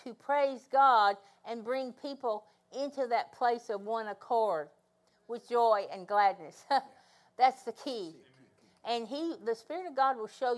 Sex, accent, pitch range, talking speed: female, American, 210-270 Hz, 155 wpm